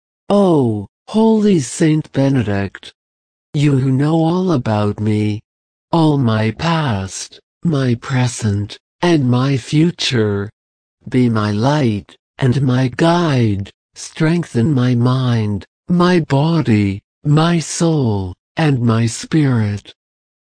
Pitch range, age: 110-160 Hz, 60-79